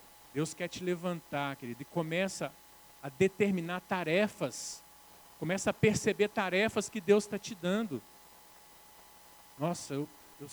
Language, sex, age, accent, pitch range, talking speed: Portuguese, male, 50-69, Brazilian, 150-195 Hz, 125 wpm